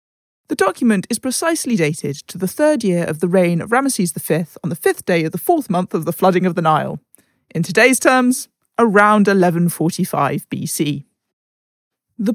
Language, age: English, 40-59